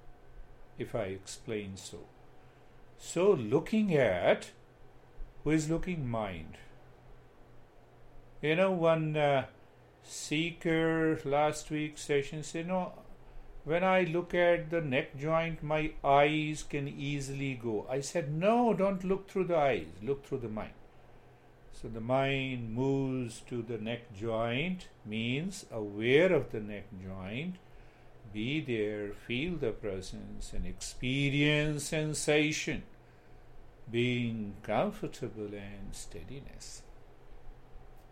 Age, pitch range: 50-69, 115-155 Hz